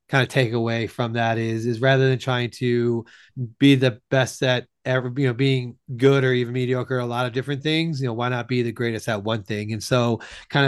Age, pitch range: 30-49, 120-135 Hz